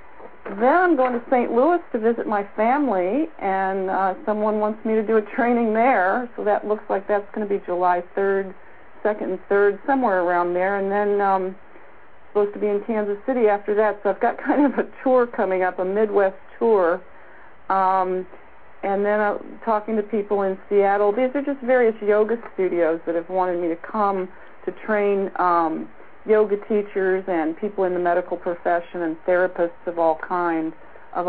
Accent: American